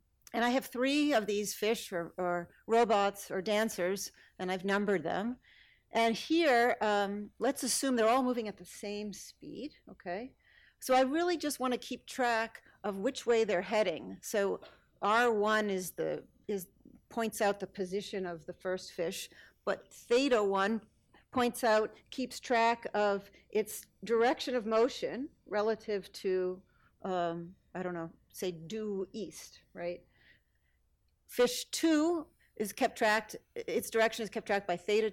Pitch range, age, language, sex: 200-250 Hz, 50-69, English, female